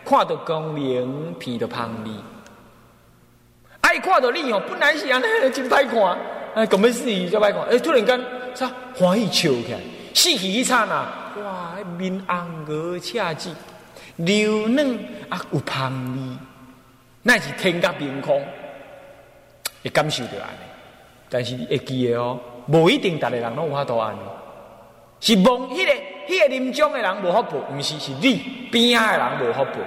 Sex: male